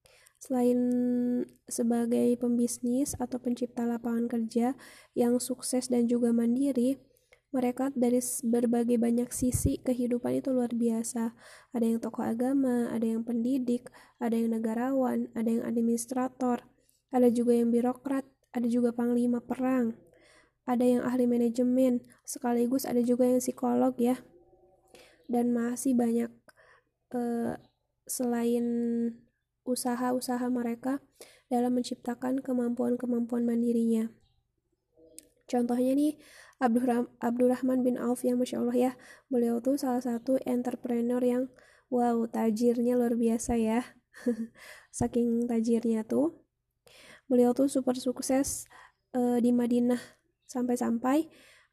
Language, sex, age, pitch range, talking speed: Indonesian, female, 10-29, 235-255 Hz, 110 wpm